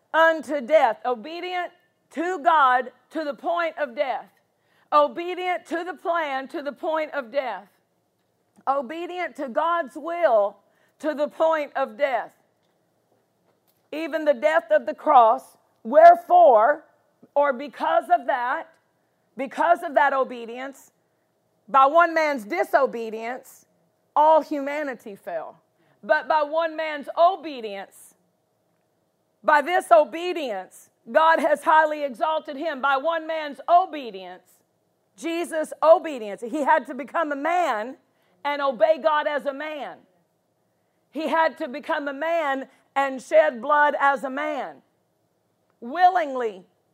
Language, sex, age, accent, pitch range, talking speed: English, female, 50-69, American, 270-325 Hz, 120 wpm